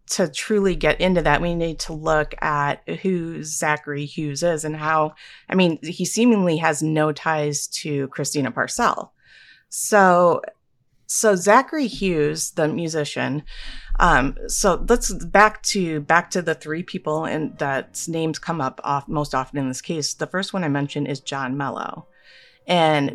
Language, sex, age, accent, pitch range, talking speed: English, female, 30-49, American, 145-180 Hz, 160 wpm